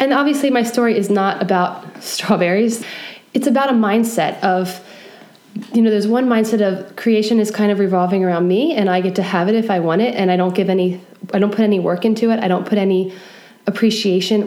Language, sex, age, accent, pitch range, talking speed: English, female, 20-39, American, 185-230 Hz, 220 wpm